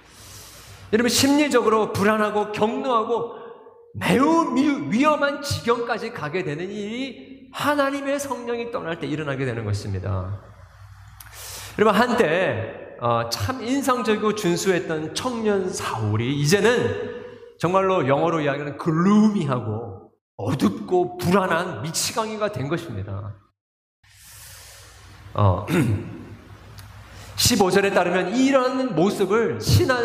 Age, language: 40-59, Korean